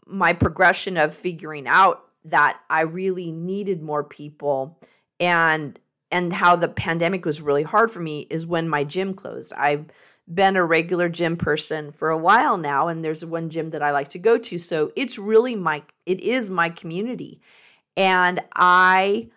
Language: English